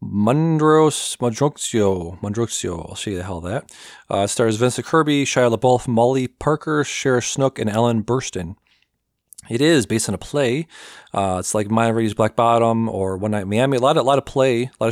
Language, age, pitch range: English, 40-59, 105-125 Hz